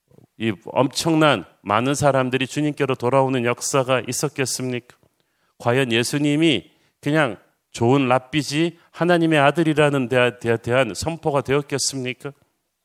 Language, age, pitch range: Korean, 40-59, 120-150 Hz